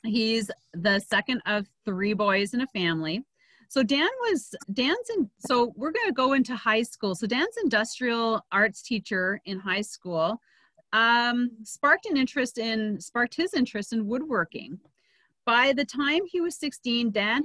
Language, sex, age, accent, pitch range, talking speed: English, female, 40-59, American, 190-260 Hz, 160 wpm